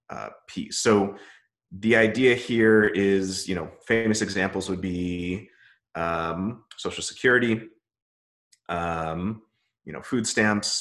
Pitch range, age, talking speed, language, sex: 90-110 Hz, 30-49, 115 wpm, English, male